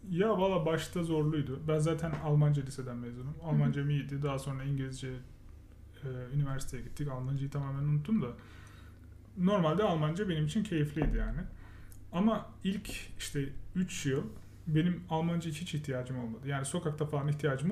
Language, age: Turkish, 30-49